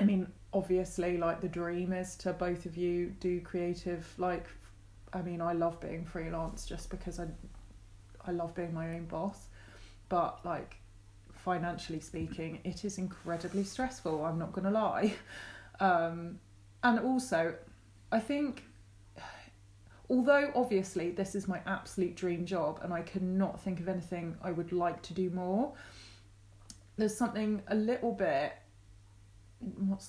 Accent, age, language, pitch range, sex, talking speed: British, 20-39, English, 120-200 Hz, female, 145 wpm